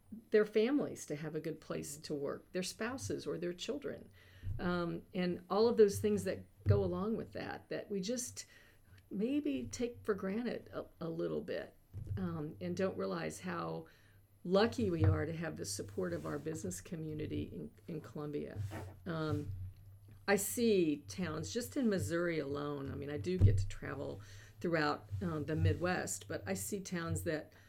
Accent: American